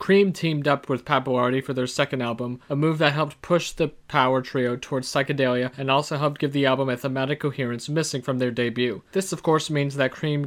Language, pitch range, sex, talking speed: English, 125-145 Hz, male, 220 wpm